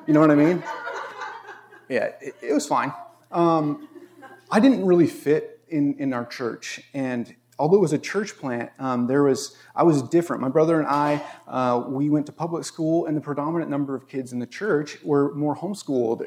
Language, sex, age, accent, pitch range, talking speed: English, male, 30-49, American, 130-170 Hz, 200 wpm